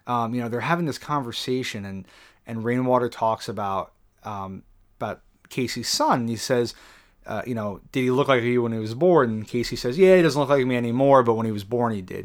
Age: 30-49